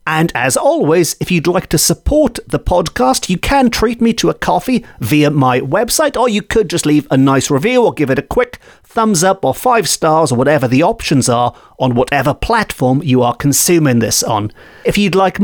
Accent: British